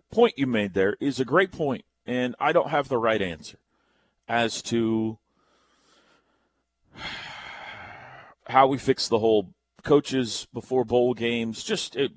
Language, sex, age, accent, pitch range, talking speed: English, male, 40-59, American, 105-140 Hz, 135 wpm